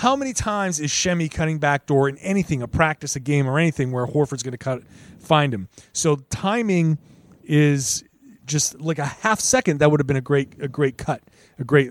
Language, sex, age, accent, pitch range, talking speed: English, male, 30-49, American, 130-175 Hz, 215 wpm